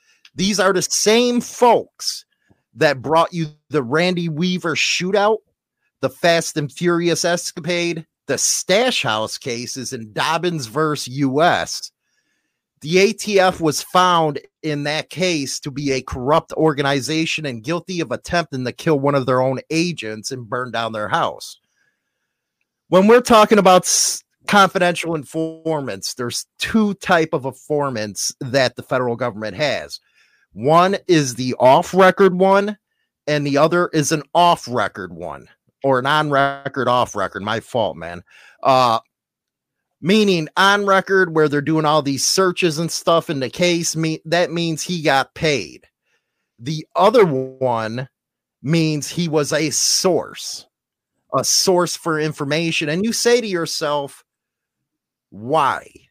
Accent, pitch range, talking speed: American, 135-180 Hz, 140 wpm